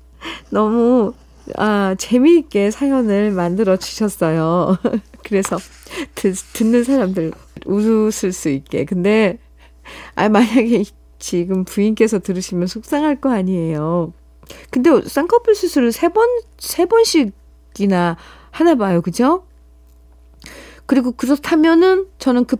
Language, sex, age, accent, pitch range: Korean, female, 40-59, native, 170-245 Hz